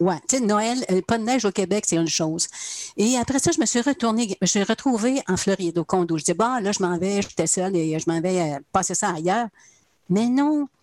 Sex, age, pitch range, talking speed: female, 60-79, 180-230 Hz, 255 wpm